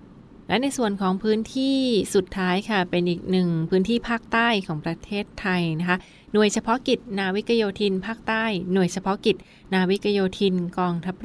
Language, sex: Thai, female